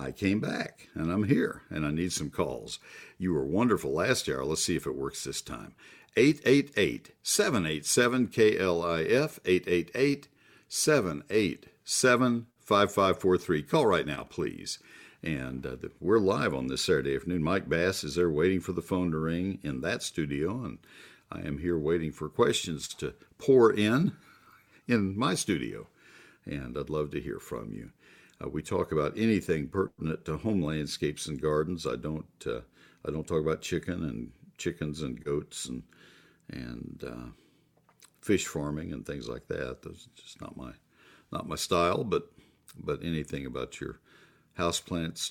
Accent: American